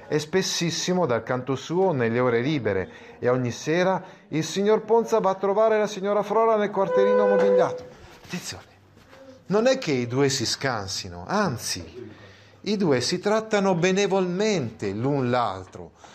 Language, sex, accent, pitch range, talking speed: Italian, male, native, 120-195 Hz, 145 wpm